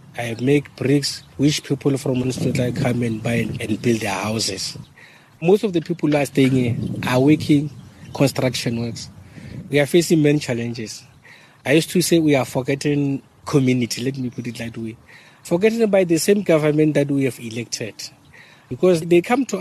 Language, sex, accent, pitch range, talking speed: English, male, South African, 130-165 Hz, 175 wpm